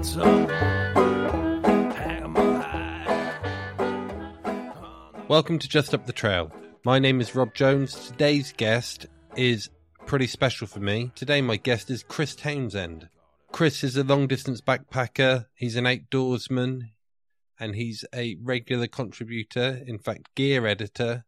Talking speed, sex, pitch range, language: 120 wpm, male, 110-135 Hz, English